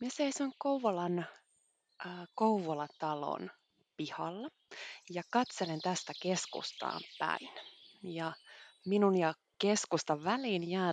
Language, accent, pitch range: Finnish, native, 165-240 Hz